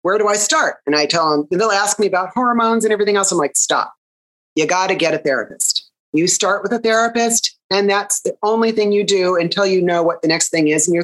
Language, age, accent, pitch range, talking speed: English, 30-49, American, 155-205 Hz, 260 wpm